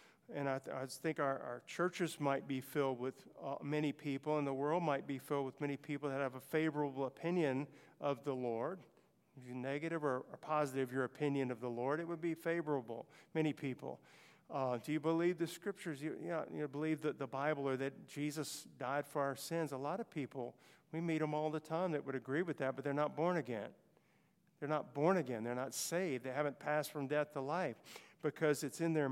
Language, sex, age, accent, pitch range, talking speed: English, male, 50-69, American, 135-160 Hz, 225 wpm